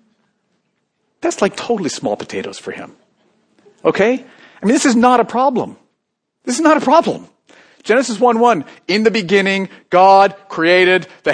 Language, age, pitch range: English, 40-59, 140-210 Hz